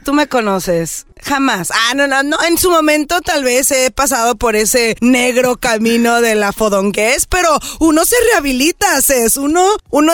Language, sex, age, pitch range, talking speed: Spanish, female, 20-39, 210-300 Hz, 180 wpm